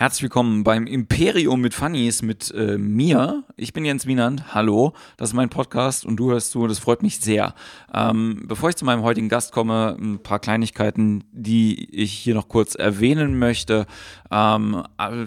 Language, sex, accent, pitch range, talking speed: German, male, German, 110-125 Hz, 175 wpm